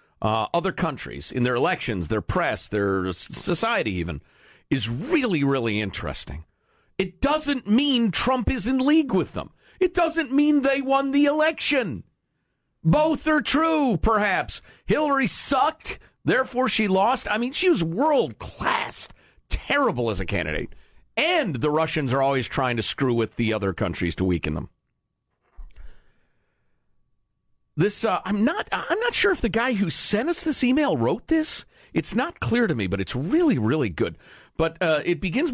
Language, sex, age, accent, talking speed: English, male, 50-69, American, 160 wpm